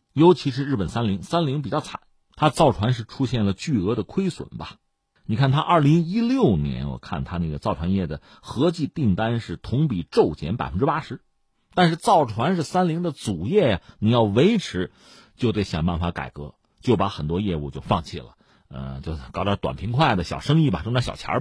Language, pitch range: Chinese, 90-150 Hz